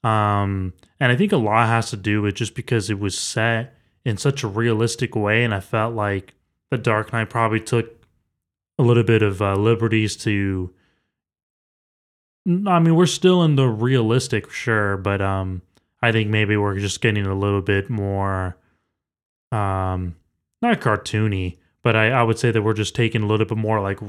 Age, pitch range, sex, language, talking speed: 20-39, 105-130 Hz, male, English, 180 wpm